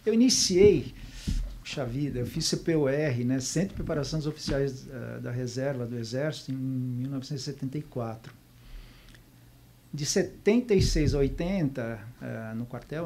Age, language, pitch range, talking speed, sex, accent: 50-69, Portuguese, 125-155 Hz, 120 wpm, male, Brazilian